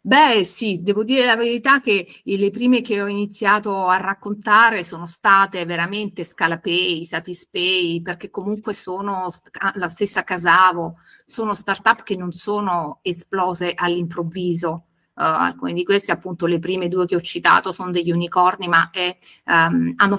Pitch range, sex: 175-205 Hz, female